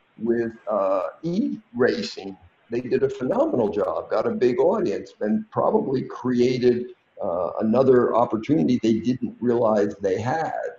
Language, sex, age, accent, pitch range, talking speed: English, male, 50-69, American, 110-160 Hz, 130 wpm